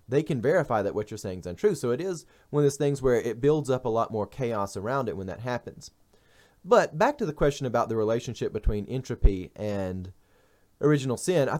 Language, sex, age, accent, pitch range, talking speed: English, male, 30-49, American, 105-135 Hz, 220 wpm